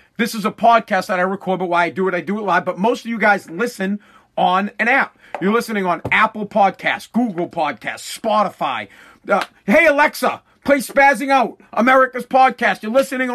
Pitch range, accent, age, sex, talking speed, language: 185-245 Hz, American, 40-59, male, 195 wpm, English